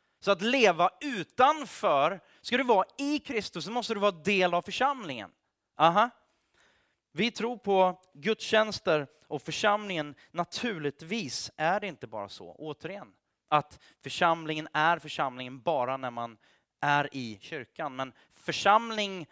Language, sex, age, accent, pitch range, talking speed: Swedish, male, 30-49, native, 145-195 Hz, 125 wpm